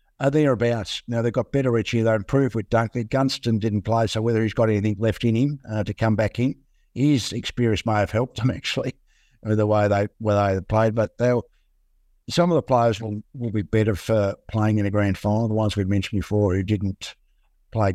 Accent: Australian